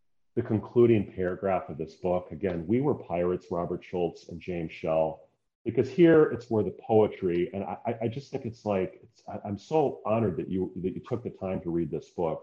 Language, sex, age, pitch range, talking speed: English, male, 40-59, 85-115 Hz, 210 wpm